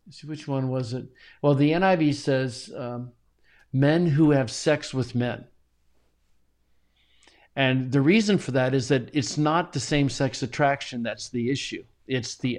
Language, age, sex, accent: English, 60-79, male, American